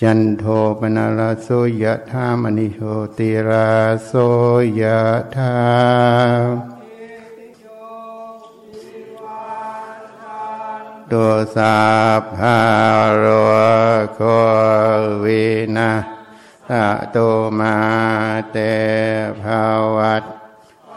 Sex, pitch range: male, 110-125 Hz